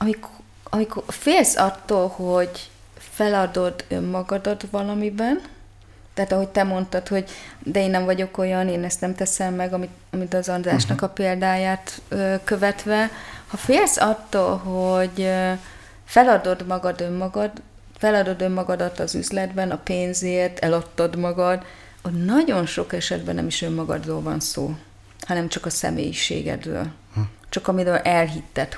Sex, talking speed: female, 130 wpm